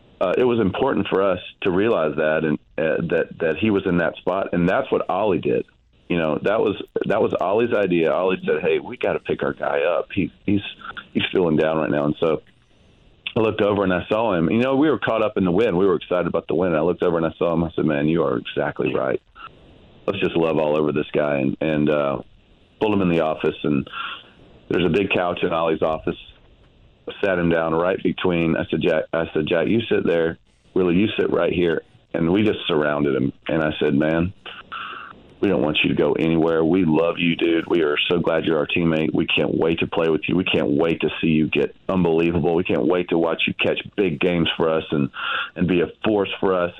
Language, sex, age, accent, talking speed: English, male, 40-59, American, 240 wpm